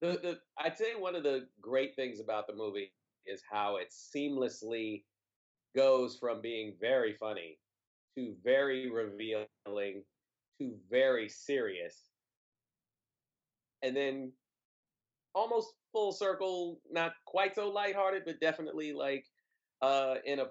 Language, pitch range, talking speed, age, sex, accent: English, 110-175 Hz, 115 wpm, 30-49, male, American